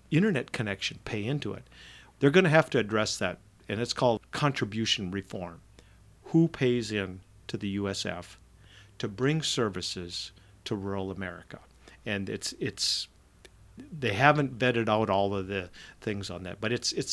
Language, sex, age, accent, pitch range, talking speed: English, male, 50-69, American, 105-145 Hz, 160 wpm